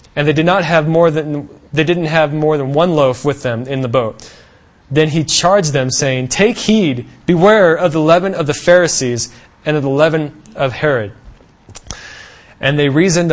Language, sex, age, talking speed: English, male, 20-39, 190 wpm